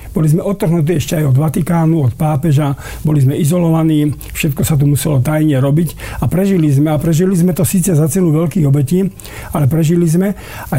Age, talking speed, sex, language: 50-69, 190 wpm, male, Slovak